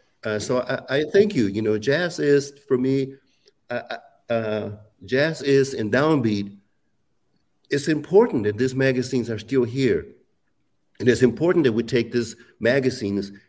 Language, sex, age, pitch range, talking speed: English, male, 50-69, 115-155 Hz, 150 wpm